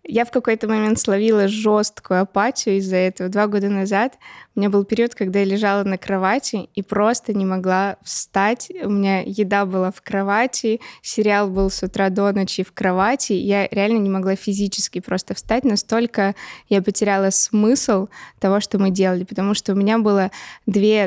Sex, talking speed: female, 175 wpm